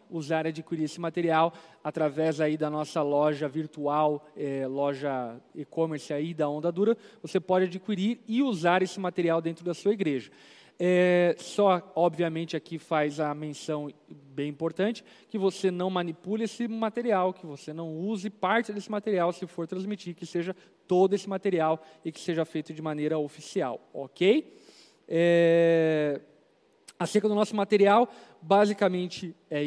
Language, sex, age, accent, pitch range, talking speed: Portuguese, male, 20-39, Brazilian, 155-200 Hz, 150 wpm